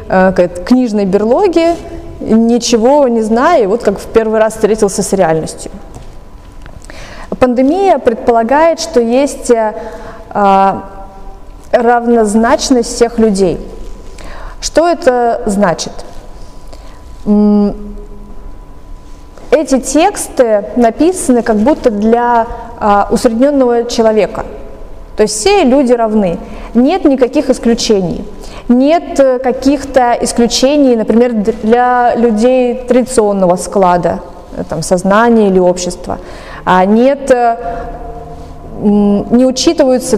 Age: 20-39